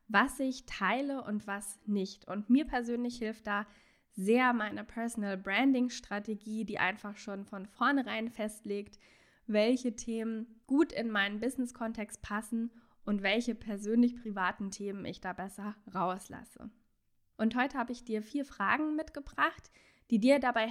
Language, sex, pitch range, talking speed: German, female, 205-245 Hz, 140 wpm